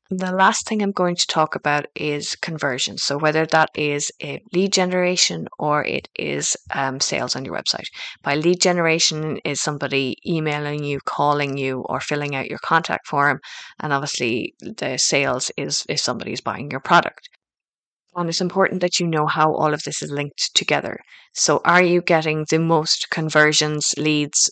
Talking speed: 175 wpm